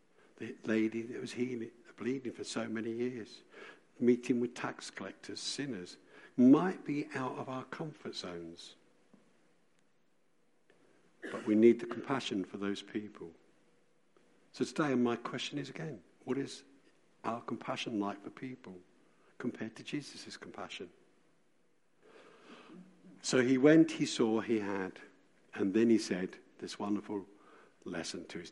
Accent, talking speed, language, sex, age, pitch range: British, 130 wpm, English, male, 60-79, 105-135 Hz